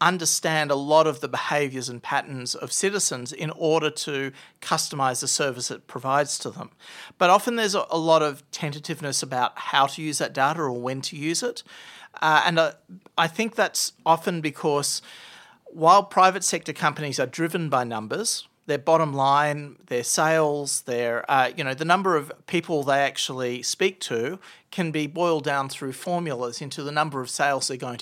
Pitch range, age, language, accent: 135-165 Hz, 40-59, English, Australian